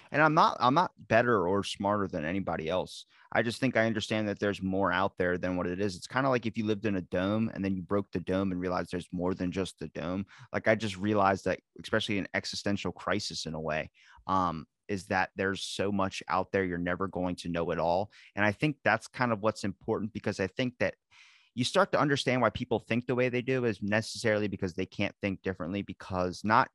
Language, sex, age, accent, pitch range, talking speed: English, male, 30-49, American, 95-115 Hz, 240 wpm